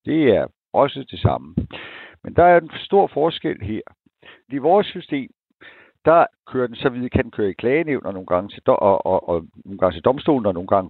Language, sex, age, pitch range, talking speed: Danish, male, 60-79, 105-155 Hz, 205 wpm